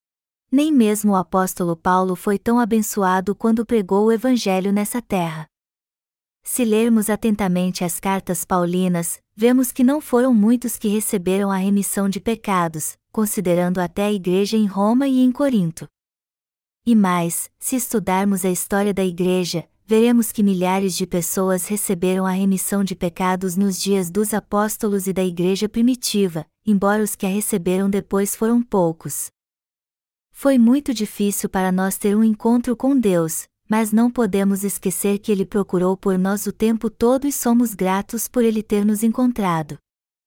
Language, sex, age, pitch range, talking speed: Portuguese, female, 20-39, 190-230 Hz, 155 wpm